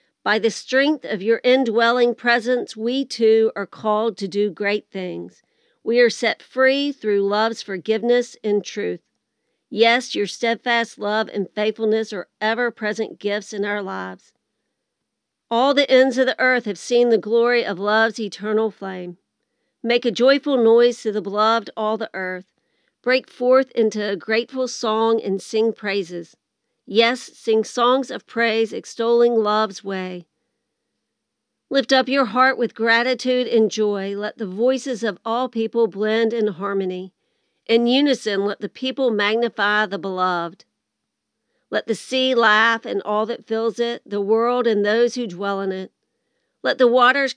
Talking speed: 155 wpm